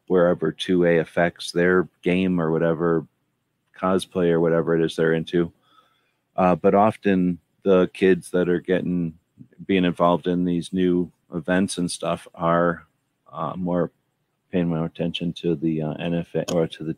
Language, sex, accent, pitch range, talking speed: English, male, American, 85-90 Hz, 150 wpm